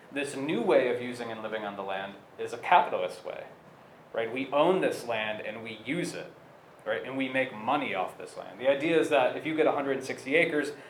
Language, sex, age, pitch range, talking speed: English, male, 30-49, 120-150 Hz, 220 wpm